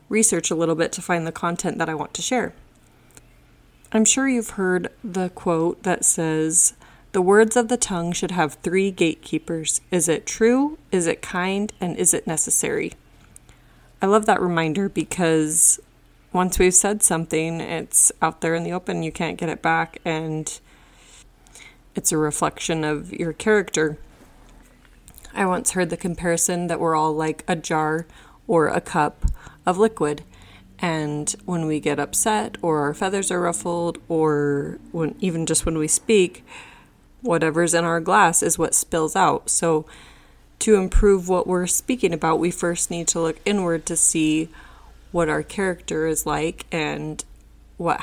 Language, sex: English, female